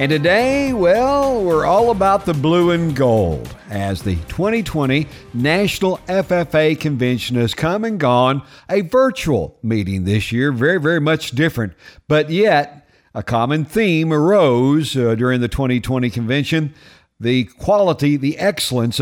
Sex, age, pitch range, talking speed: male, 50-69, 120-160 Hz, 140 wpm